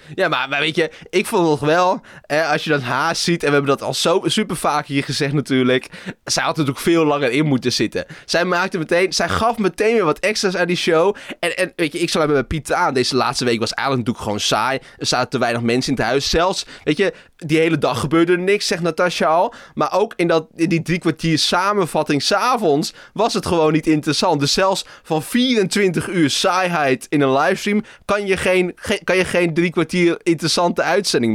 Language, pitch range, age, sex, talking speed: Dutch, 135-180 Hz, 20-39, male, 230 wpm